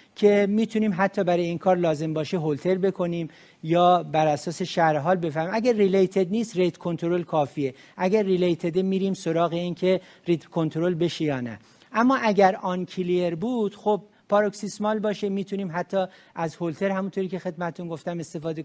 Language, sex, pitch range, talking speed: Persian, male, 160-195 Hz, 150 wpm